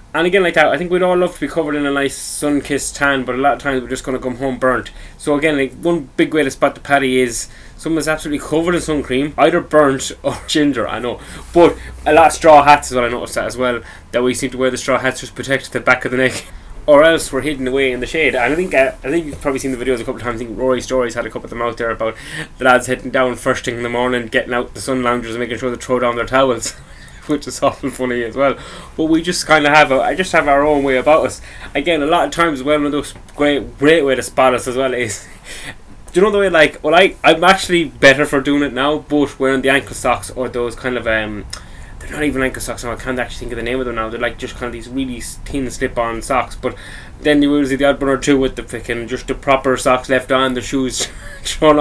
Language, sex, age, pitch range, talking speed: English, male, 10-29, 120-145 Hz, 285 wpm